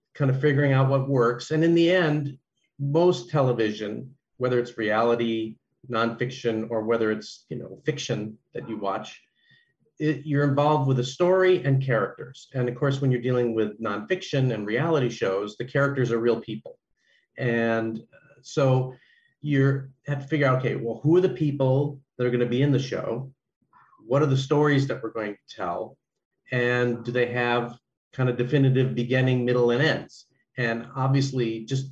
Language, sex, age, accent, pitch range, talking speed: English, male, 40-59, American, 115-135 Hz, 175 wpm